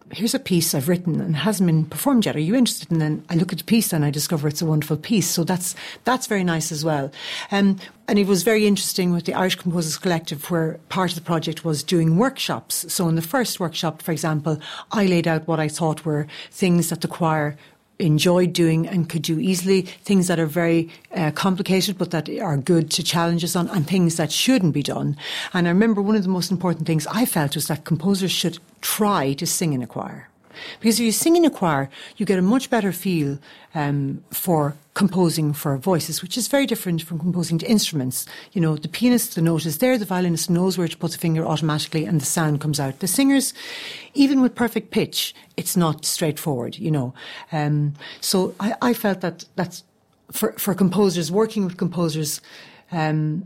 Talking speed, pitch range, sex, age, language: 215 wpm, 160-195 Hz, female, 60-79, English